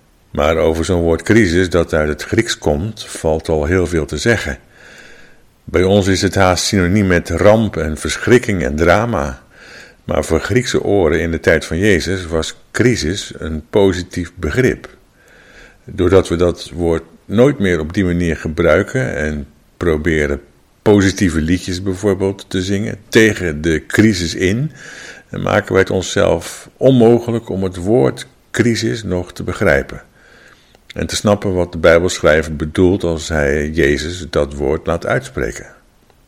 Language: Dutch